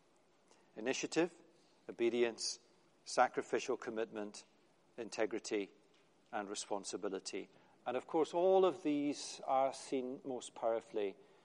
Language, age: English, 40-59